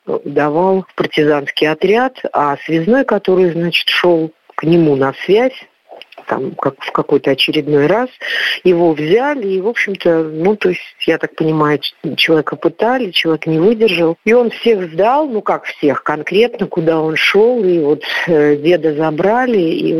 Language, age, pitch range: Russian, 50-69, 145-190 Hz